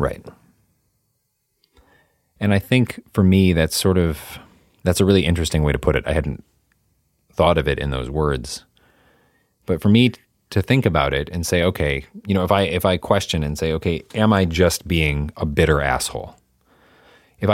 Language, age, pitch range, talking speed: English, 30-49, 75-95 Hz, 185 wpm